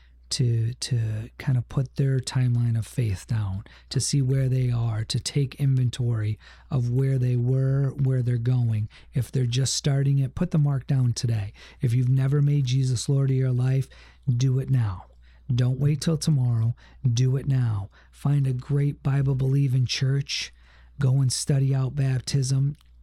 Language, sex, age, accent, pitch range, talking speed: English, male, 40-59, American, 115-135 Hz, 165 wpm